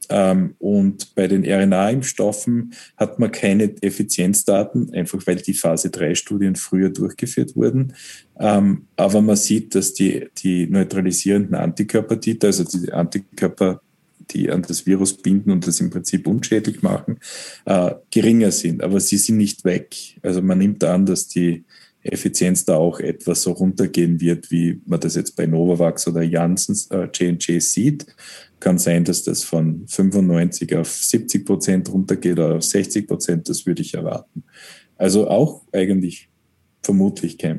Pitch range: 90-105 Hz